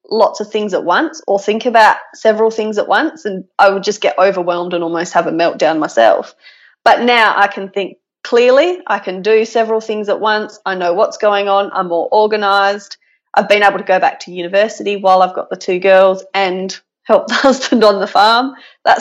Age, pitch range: 30-49, 185-225 Hz